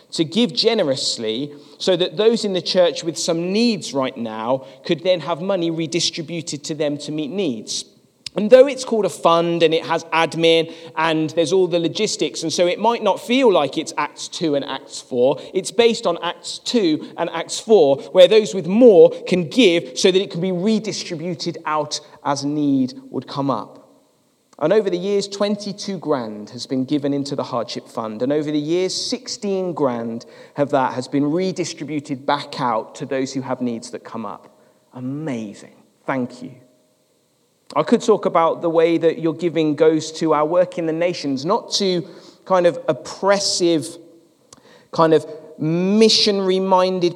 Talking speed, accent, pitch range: 180 wpm, British, 150-200 Hz